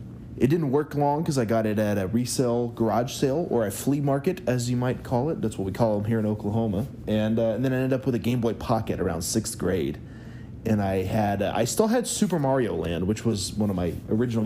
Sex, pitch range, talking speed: male, 105-130 Hz, 250 wpm